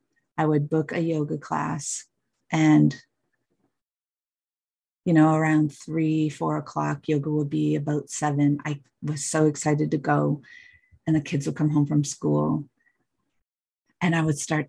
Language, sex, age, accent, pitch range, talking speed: English, female, 30-49, American, 145-175 Hz, 145 wpm